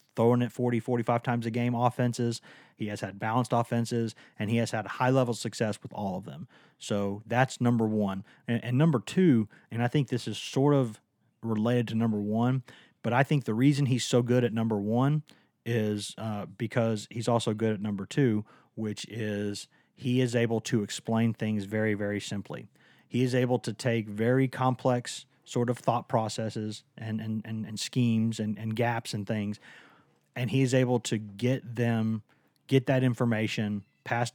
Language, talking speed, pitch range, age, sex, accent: English, 180 wpm, 105-120 Hz, 30-49, male, American